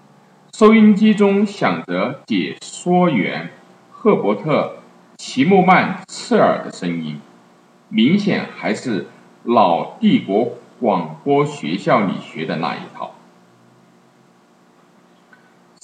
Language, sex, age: Chinese, male, 50-69